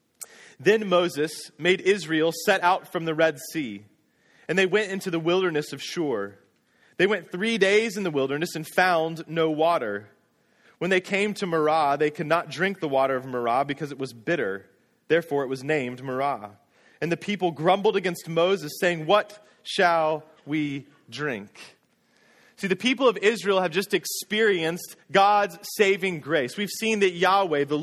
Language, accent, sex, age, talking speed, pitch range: English, American, male, 30-49, 170 wpm, 155-205 Hz